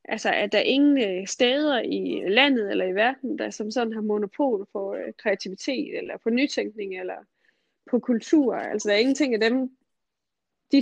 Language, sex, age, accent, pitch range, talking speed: Danish, female, 20-39, native, 205-260 Hz, 185 wpm